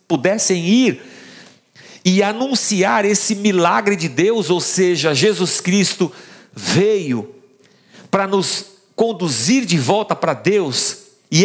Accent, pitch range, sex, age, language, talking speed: Brazilian, 140-205 Hz, male, 50-69, Portuguese, 110 wpm